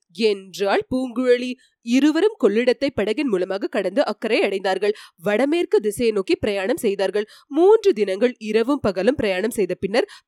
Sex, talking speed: female, 115 wpm